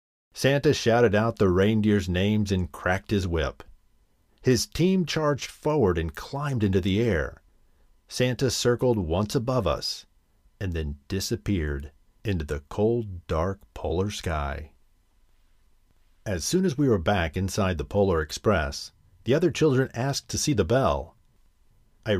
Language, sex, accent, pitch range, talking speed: English, male, American, 85-115 Hz, 140 wpm